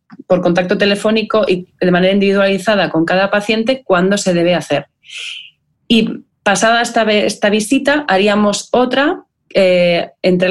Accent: Spanish